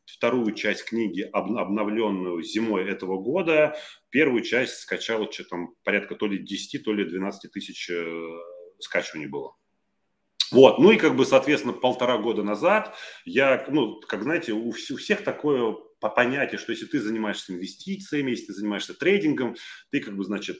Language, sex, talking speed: Russian, male, 165 wpm